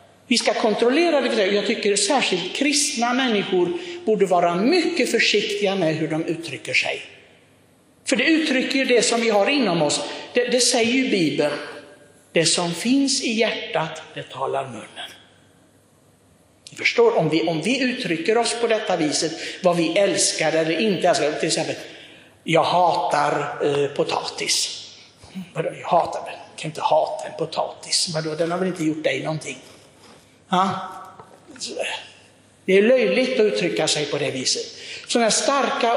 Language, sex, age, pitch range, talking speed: Swedish, male, 60-79, 170-245 Hz, 145 wpm